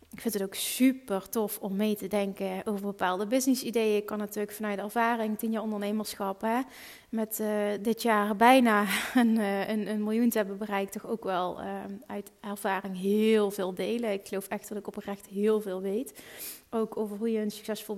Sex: female